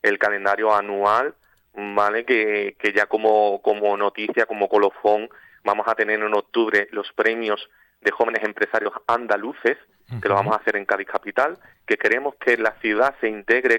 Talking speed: 165 wpm